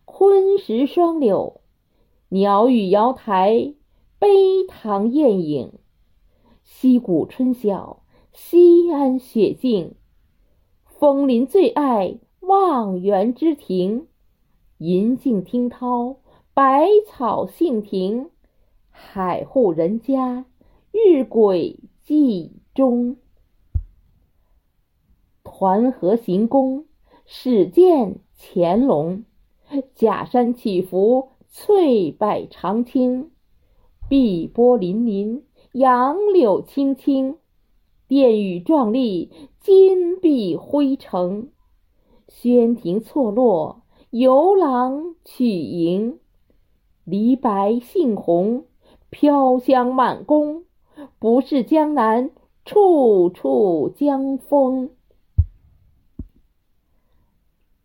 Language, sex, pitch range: Chinese, female, 205-285 Hz